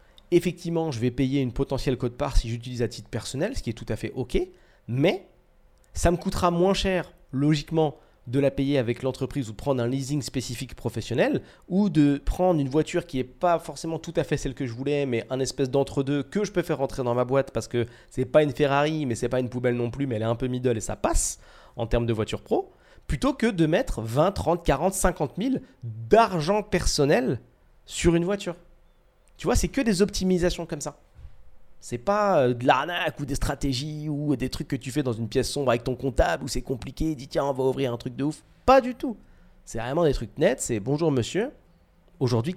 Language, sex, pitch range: French, male, 125-170 Hz